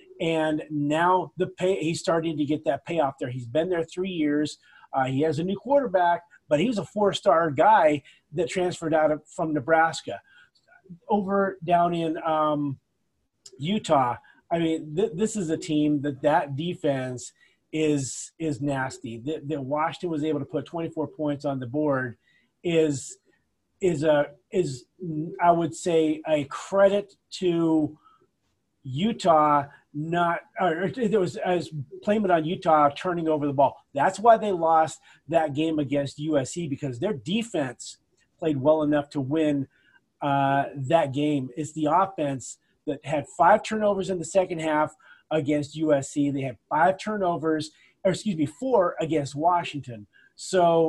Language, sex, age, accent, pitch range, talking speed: English, male, 30-49, American, 150-185 Hz, 155 wpm